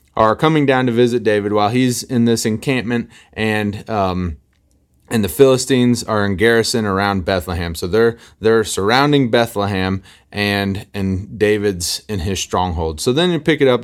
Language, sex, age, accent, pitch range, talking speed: English, male, 30-49, American, 95-130 Hz, 165 wpm